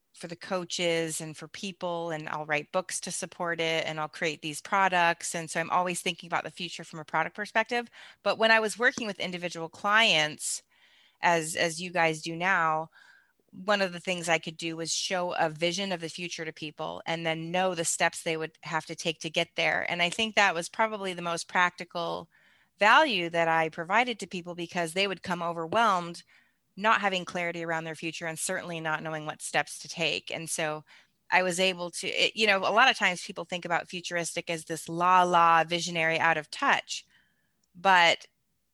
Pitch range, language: 160-185 Hz, English